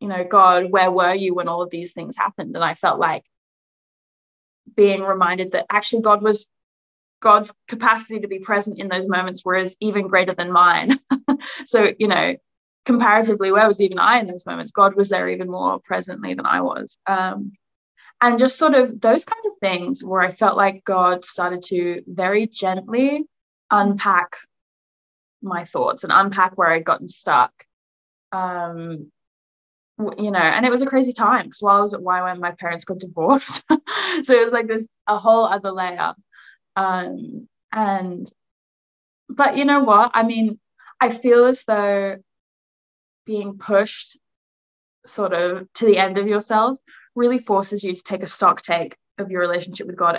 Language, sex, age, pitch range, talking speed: English, female, 10-29, 185-225 Hz, 170 wpm